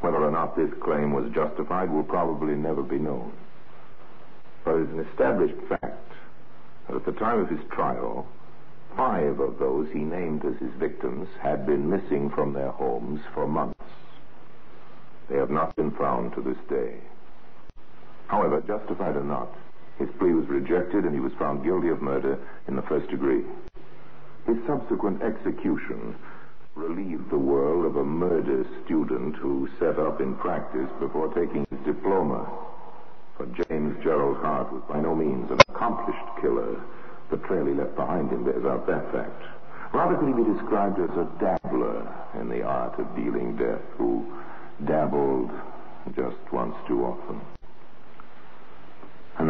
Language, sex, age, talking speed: English, male, 60-79, 155 wpm